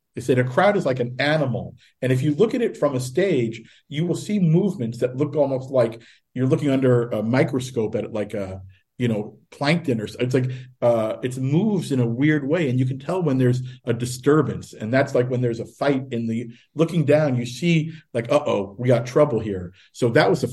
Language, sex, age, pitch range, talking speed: English, male, 50-69, 115-145 Hz, 230 wpm